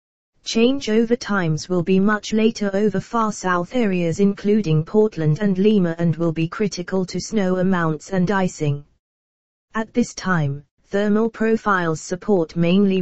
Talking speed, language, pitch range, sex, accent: 145 wpm, English, 170-210 Hz, female, British